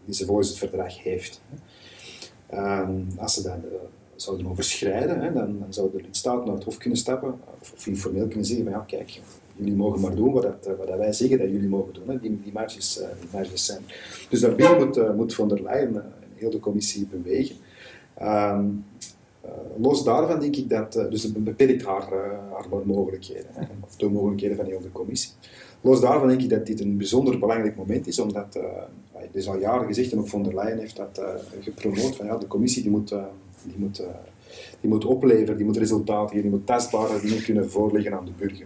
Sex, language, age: male, Dutch, 40-59